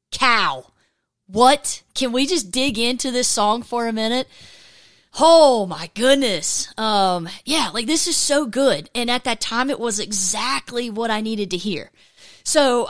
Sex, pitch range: female, 200-245 Hz